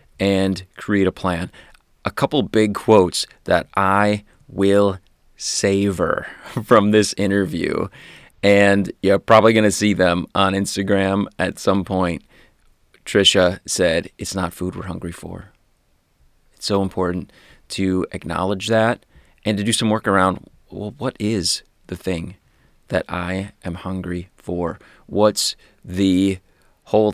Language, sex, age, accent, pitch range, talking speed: English, male, 30-49, American, 90-100 Hz, 130 wpm